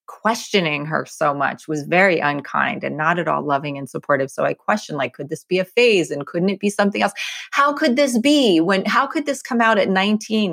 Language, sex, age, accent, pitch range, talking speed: English, female, 30-49, American, 155-200 Hz, 235 wpm